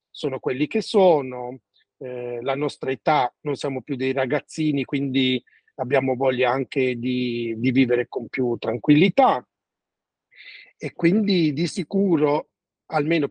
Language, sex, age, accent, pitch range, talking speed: Italian, male, 40-59, native, 130-150 Hz, 125 wpm